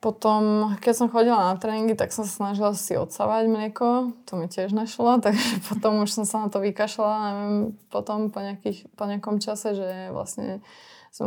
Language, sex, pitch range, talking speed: Slovak, female, 195-220 Hz, 180 wpm